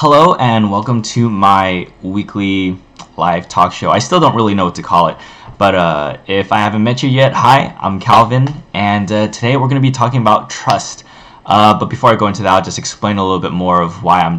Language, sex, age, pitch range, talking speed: English, male, 10-29, 95-115 Hz, 230 wpm